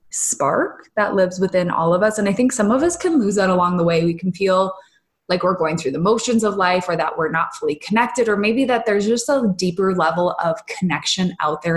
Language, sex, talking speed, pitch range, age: English, female, 245 wpm, 175-220 Hz, 20-39